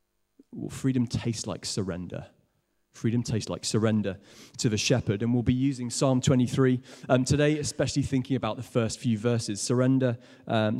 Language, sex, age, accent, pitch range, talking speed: English, male, 30-49, British, 110-135 Hz, 160 wpm